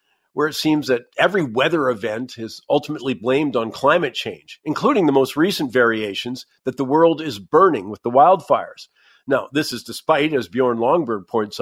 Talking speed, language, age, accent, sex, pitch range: 175 wpm, English, 50-69, American, male, 125-155 Hz